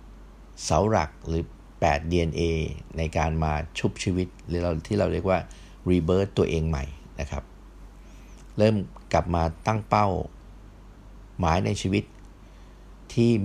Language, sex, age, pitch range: Thai, male, 50-69, 75-95 Hz